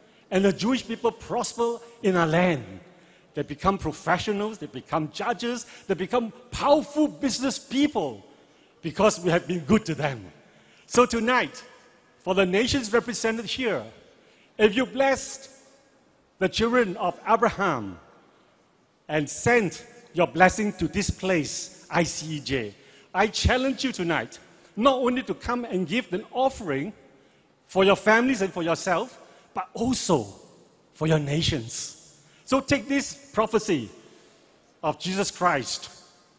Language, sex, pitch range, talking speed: English, male, 160-230 Hz, 130 wpm